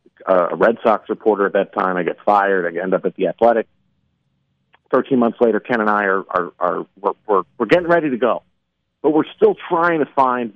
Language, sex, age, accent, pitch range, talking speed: English, male, 40-59, American, 105-155 Hz, 215 wpm